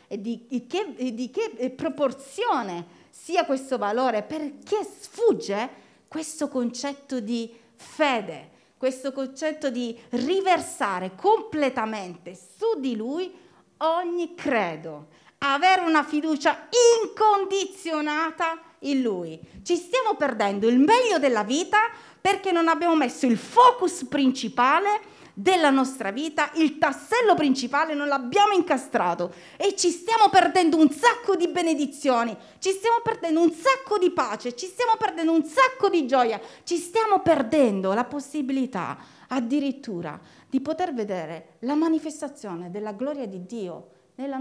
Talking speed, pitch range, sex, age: 125 wpm, 235-350 Hz, female, 40-59